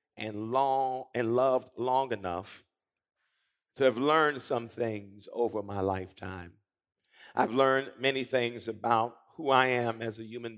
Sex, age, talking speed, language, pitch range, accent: male, 50-69, 140 wpm, English, 115-165 Hz, American